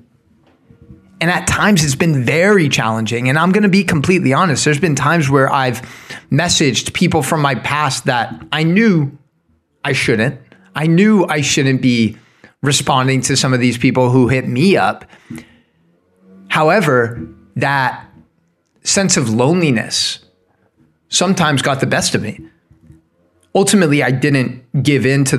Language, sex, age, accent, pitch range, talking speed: English, male, 20-39, American, 120-155 Hz, 145 wpm